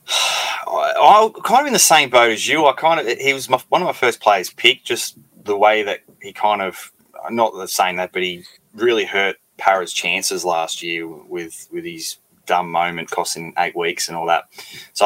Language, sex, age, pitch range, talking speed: English, male, 20-39, 90-140 Hz, 210 wpm